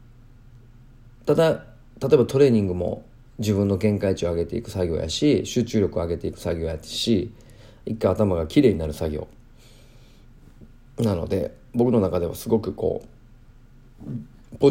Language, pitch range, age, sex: Japanese, 95-125 Hz, 40-59, male